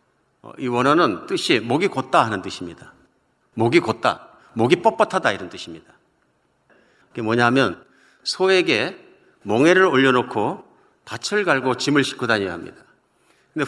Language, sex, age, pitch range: Korean, male, 50-69, 120-160 Hz